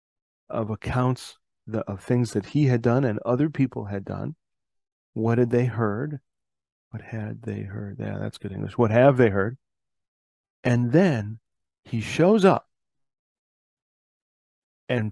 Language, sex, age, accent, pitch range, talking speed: English, male, 40-59, American, 105-130 Hz, 145 wpm